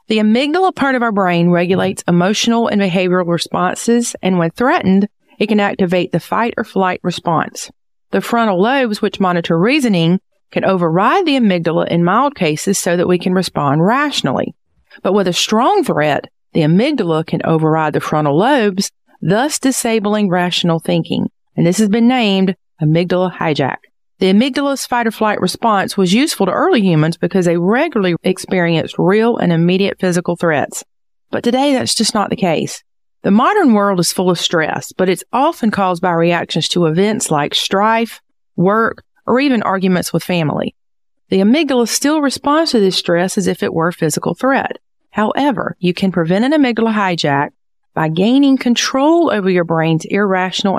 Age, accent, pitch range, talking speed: 40-59, American, 175-235 Hz, 165 wpm